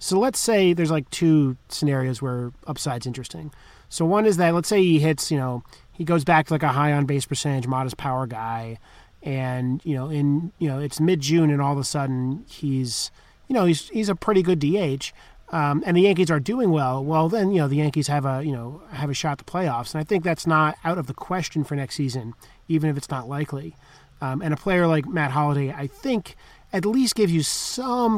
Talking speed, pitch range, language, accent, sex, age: 230 wpm, 140-175 Hz, English, American, male, 30-49